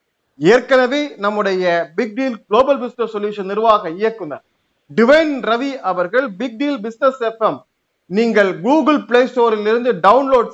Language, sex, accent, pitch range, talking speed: Tamil, male, native, 195-255 Hz, 65 wpm